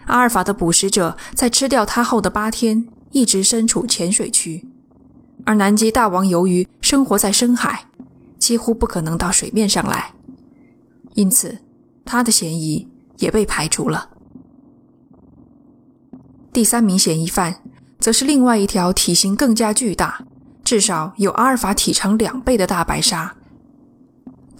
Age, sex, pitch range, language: 20-39, female, 190-255 Hz, Chinese